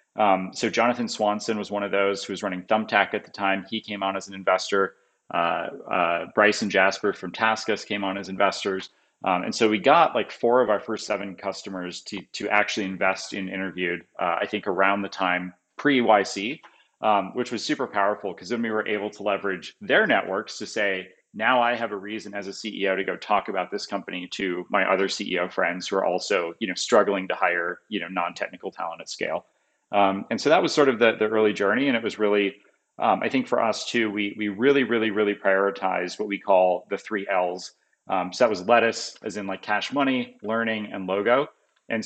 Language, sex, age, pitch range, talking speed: English, male, 30-49, 95-110 Hz, 220 wpm